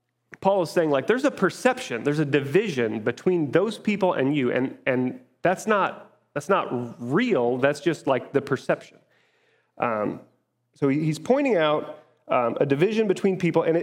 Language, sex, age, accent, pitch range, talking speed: English, male, 30-49, American, 120-165 Hz, 165 wpm